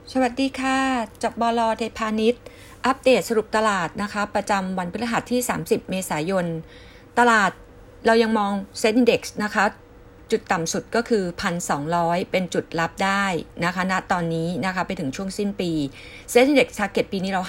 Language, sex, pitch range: Thai, female, 170-220 Hz